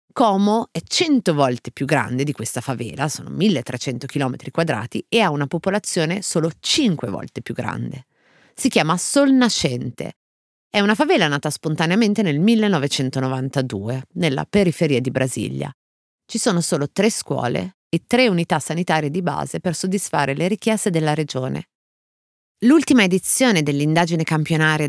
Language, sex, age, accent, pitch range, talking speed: Italian, female, 30-49, native, 135-195 Hz, 140 wpm